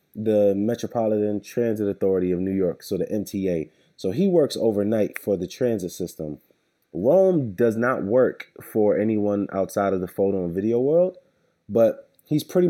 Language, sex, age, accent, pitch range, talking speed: English, male, 30-49, American, 95-120 Hz, 160 wpm